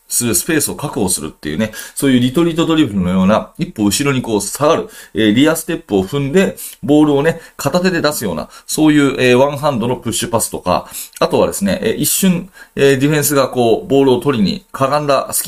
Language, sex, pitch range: Japanese, male, 115-165 Hz